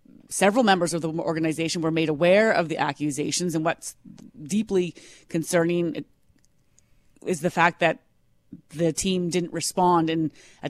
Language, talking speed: English, 140 wpm